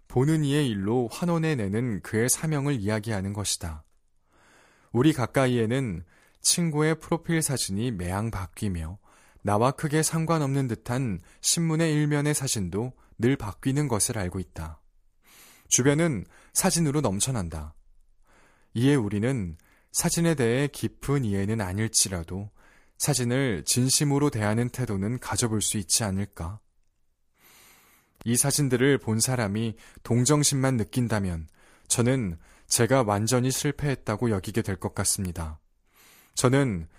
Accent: native